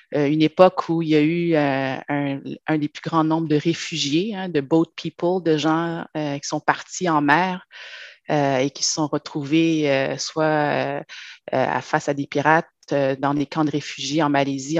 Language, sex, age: French, female, 30-49